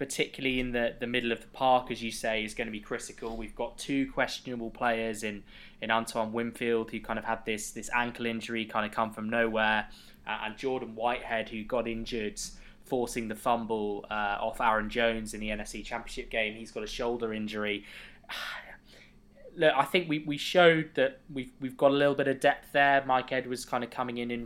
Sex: male